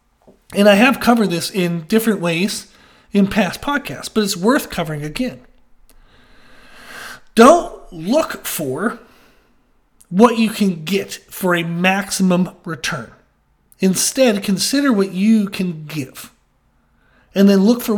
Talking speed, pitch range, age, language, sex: 125 wpm, 170-225 Hz, 40-59, English, male